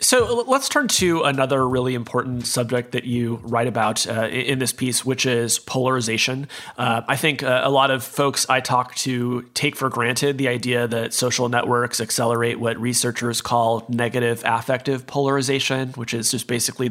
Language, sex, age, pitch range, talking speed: English, male, 30-49, 120-140 Hz, 170 wpm